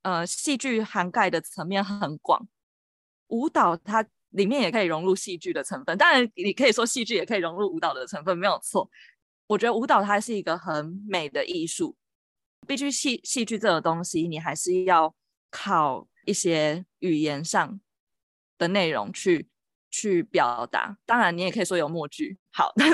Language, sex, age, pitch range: Chinese, female, 20-39, 170-225 Hz